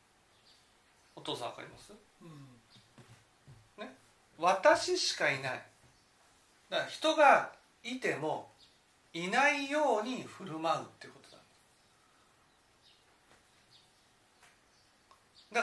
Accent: native